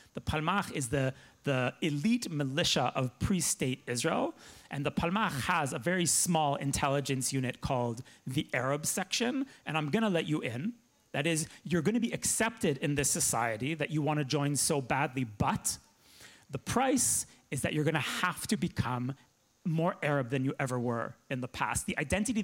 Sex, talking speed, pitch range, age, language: male, 185 wpm, 135-170 Hz, 30-49, Polish